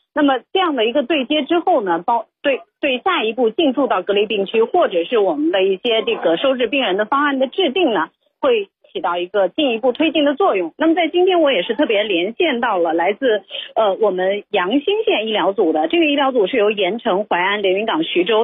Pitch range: 225-320 Hz